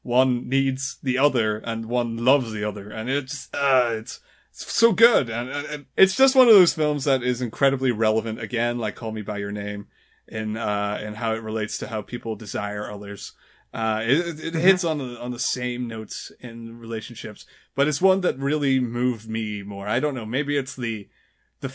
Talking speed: 205 wpm